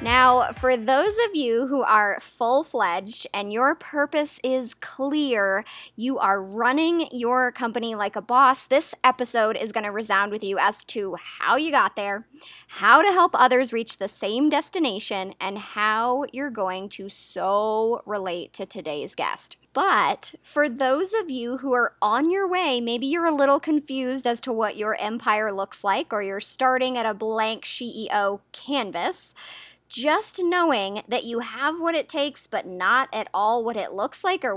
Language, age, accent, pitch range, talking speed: English, 10-29, American, 215-280 Hz, 175 wpm